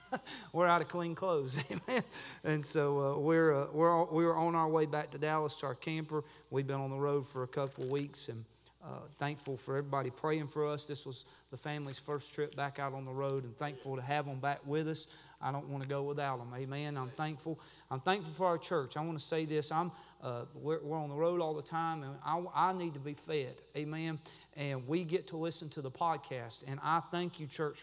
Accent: American